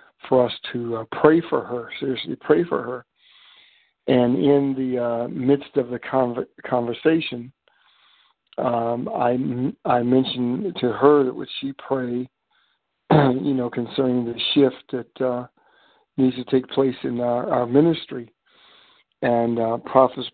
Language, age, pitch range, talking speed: English, 50-69, 120-135 Hz, 145 wpm